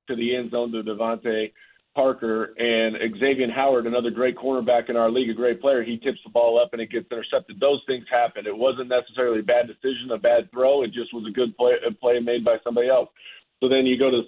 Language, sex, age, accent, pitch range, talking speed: English, male, 40-59, American, 125-145 Hz, 240 wpm